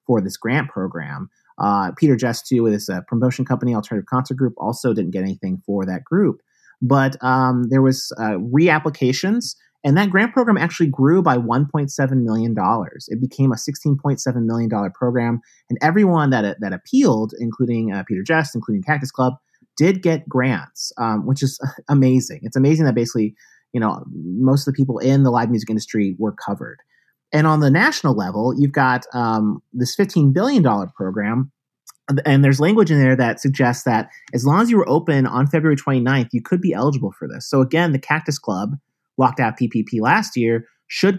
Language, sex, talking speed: English, male, 180 wpm